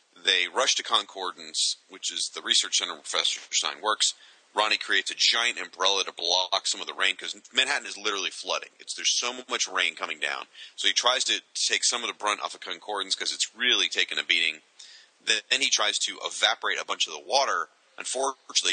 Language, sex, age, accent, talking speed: English, male, 30-49, American, 210 wpm